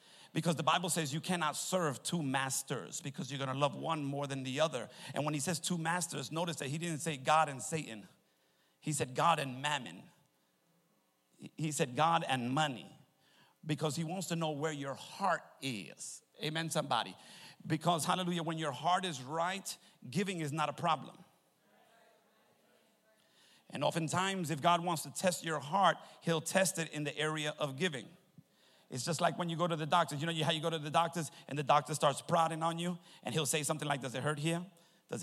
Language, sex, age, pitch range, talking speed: English, male, 50-69, 145-170 Hz, 200 wpm